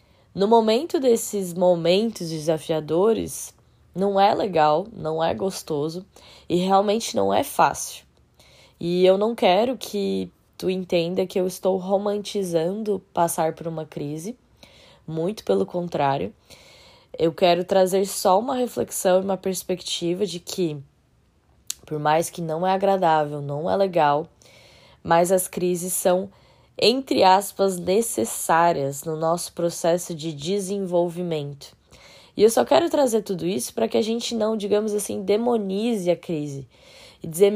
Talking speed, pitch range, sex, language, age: 135 wpm, 165-205 Hz, female, Portuguese, 10-29